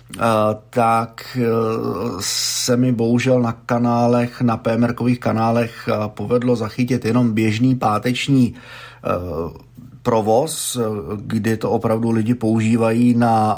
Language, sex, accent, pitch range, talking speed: Czech, male, native, 110-120 Hz, 95 wpm